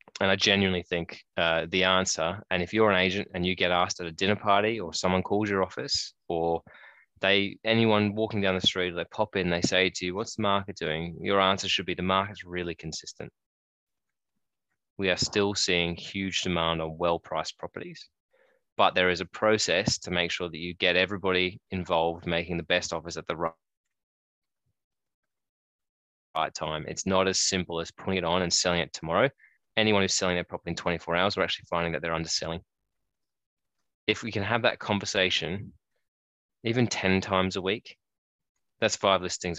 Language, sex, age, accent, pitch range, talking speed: English, male, 20-39, Australian, 85-100 Hz, 185 wpm